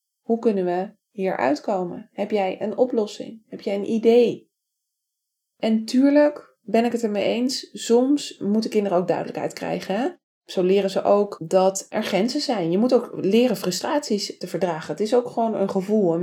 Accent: Dutch